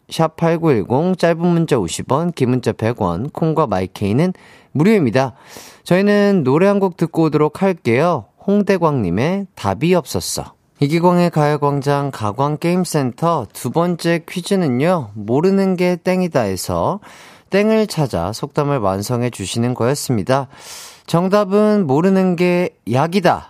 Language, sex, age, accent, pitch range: Korean, male, 30-49, native, 125-195 Hz